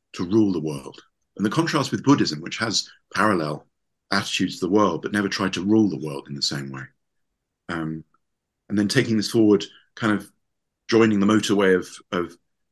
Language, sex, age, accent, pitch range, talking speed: English, male, 50-69, British, 90-110 Hz, 190 wpm